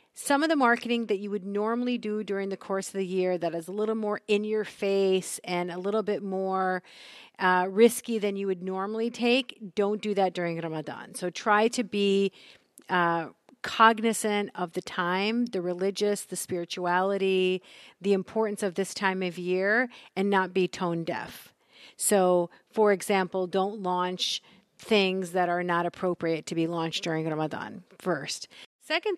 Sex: female